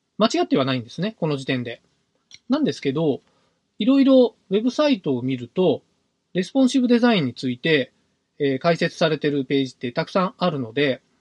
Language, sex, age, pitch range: Japanese, male, 20-39, 140-215 Hz